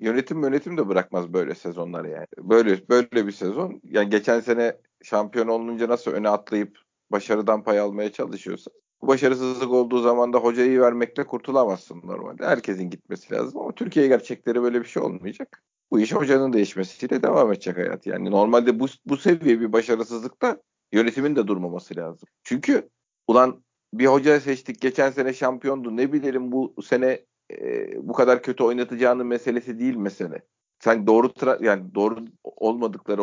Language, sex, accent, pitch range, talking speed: Turkish, male, native, 110-130 Hz, 155 wpm